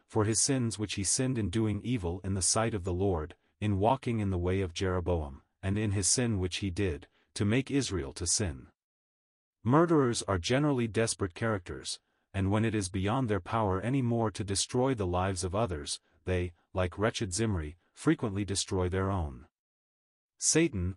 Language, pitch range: English, 90-115 Hz